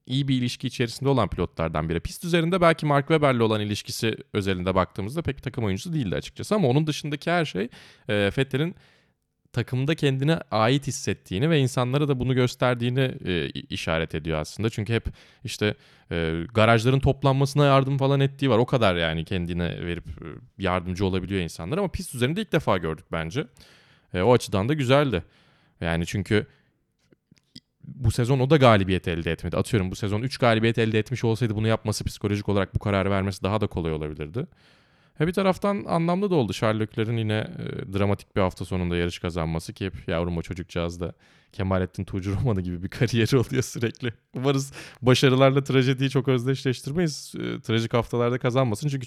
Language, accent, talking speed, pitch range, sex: Turkish, native, 165 wpm, 95-135 Hz, male